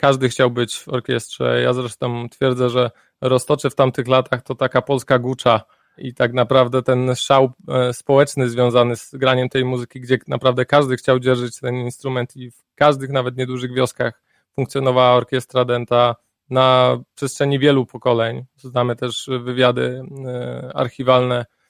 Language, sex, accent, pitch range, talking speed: Polish, male, native, 125-140 Hz, 145 wpm